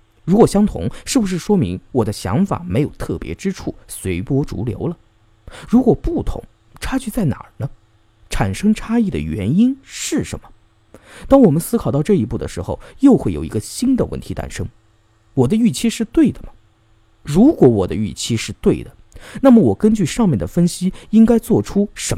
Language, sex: Chinese, male